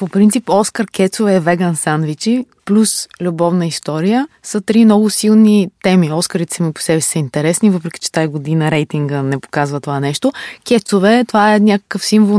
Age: 20-39